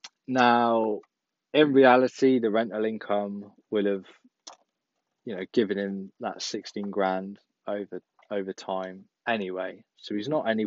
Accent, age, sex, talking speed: British, 20-39, male, 130 wpm